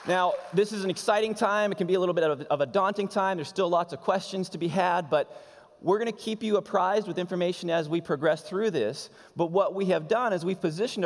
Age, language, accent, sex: 20-39, English, American, male